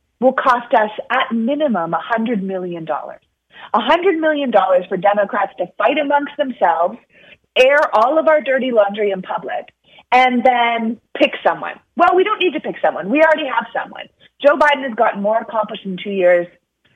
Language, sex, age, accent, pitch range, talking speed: English, female, 30-49, American, 190-255 Hz, 165 wpm